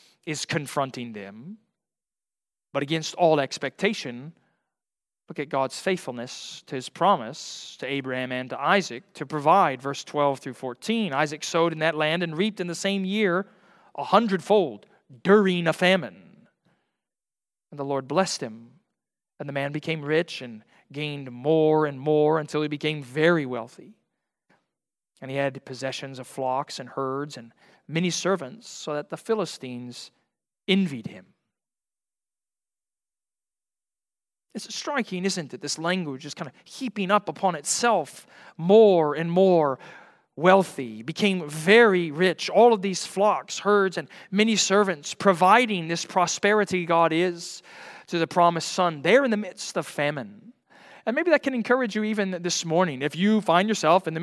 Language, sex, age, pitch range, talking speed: English, male, 40-59, 145-195 Hz, 150 wpm